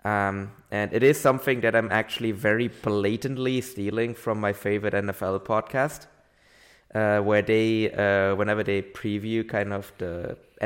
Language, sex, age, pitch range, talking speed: English, male, 20-39, 100-120 Hz, 145 wpm